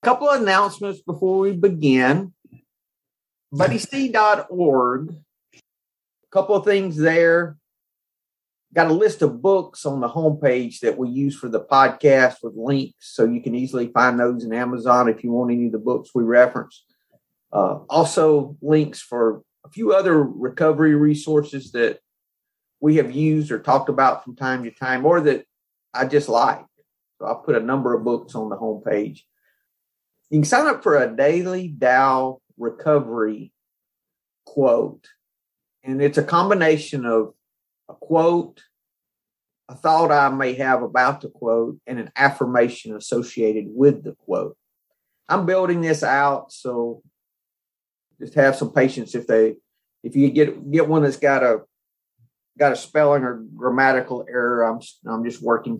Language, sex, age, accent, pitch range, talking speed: English, male, 40-59, American, 120-155 Hz, 150 wpm